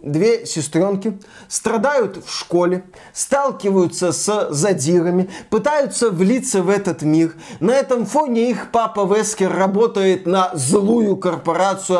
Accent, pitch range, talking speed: native, 180-215 Hz, 115 wpm